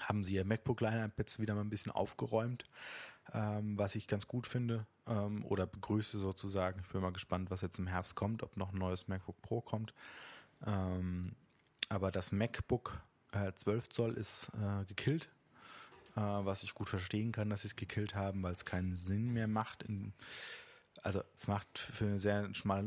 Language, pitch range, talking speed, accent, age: German, 100-115 Hz, 180 wpm, German, 20-39